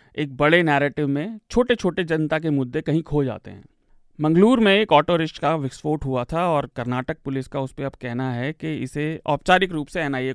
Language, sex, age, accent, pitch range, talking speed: Hindi, male, 40-59, native, 130-160 Hz, 210 wpm